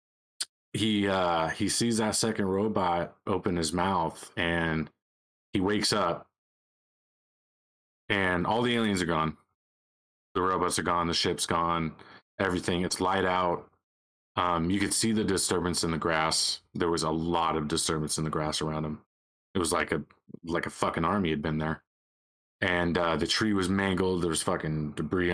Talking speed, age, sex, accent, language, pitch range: 170 wpm, 30-49, male, American, English, 80-95 Hz